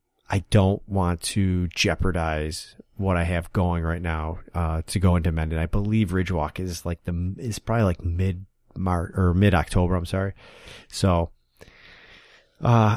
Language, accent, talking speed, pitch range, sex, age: English, American, 155 wpm, 85-100 Hz, male, 30-49